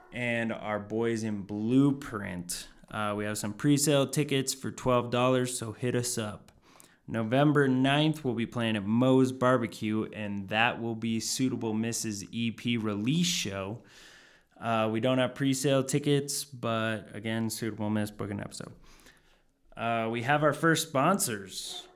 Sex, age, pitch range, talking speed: male, 20-39, 100-125 Hz, 145 wpm